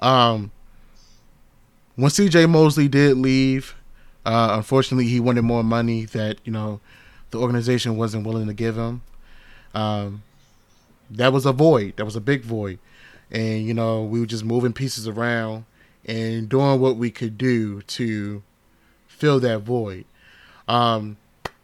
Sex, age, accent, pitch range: male, 20-39, American, 115-140 Hz